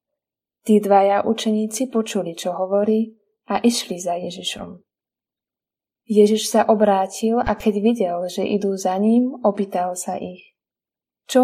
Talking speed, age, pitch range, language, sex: 125 wpm, 20-39, 195-225 Hz, Slovak, female